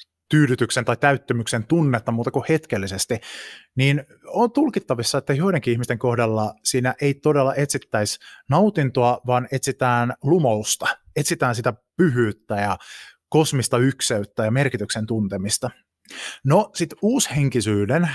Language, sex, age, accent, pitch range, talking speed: Finnish, male, 20-39, native, 115-150 Hz, 110 wpm